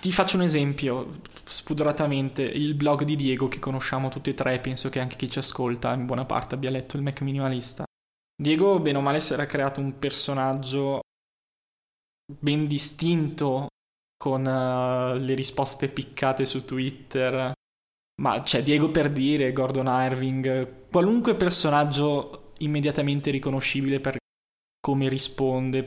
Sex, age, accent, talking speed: male, 20-39, native, 135 wpm